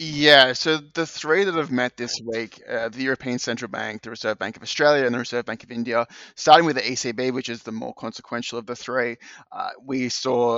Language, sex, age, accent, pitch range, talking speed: English, male, 20-39, Australian, 115-130 Hz, 225 wpm